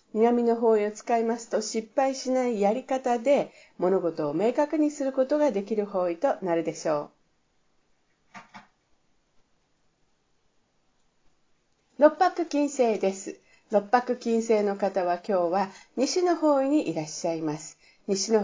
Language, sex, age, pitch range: Japanese, female, 50-69, 190-270 Hz